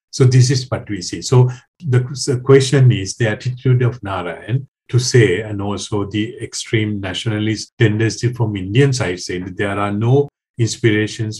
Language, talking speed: English, 170 wpm